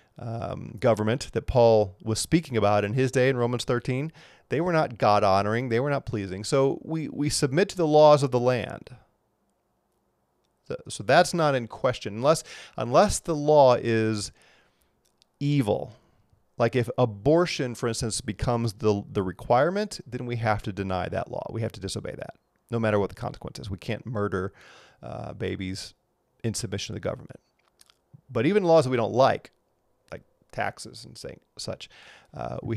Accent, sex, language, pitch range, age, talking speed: American, male, English, 110-140 Hz, 40-59, 170 wpm